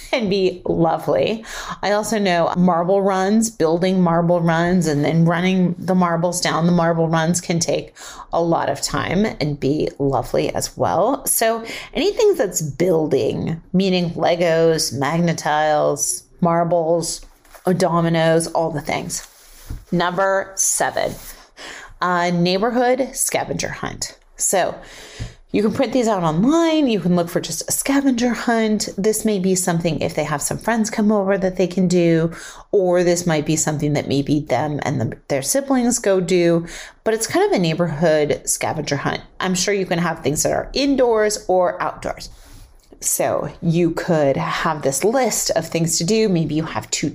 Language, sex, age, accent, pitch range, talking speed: English, female, 30-49, American, 155-200 Hz, 160 wpm